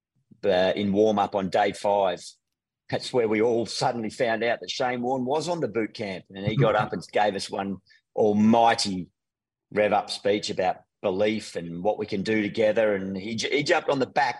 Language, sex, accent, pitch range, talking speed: English, male, Australian, 100-120 Hz, 200 wpm